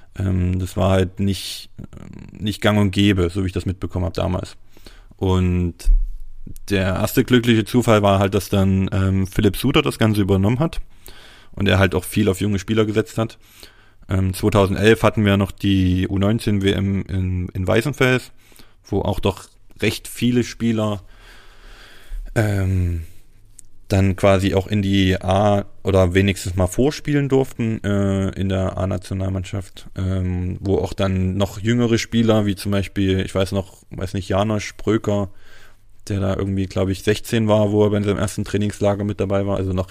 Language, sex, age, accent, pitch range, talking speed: German, male, 30-49, German, 95-105 Hz, 160 wpm